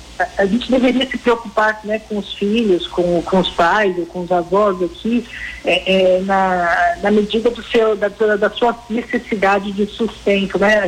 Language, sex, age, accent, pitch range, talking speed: Portuguese, female, 50-69, Brazilian, 195-225 Hz, 170 wpm